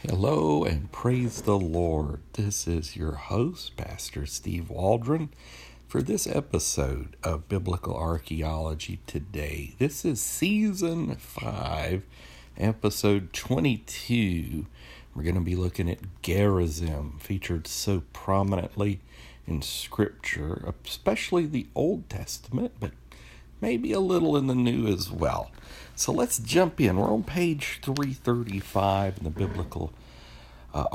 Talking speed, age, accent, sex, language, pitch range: 120 wpm, 60-79, American, male, English, 75-110 Hz